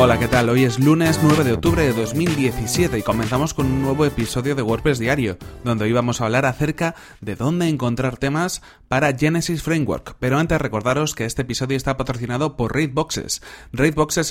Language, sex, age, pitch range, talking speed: Spanish, male, 30-49, 115-145 Hz, 185 wpm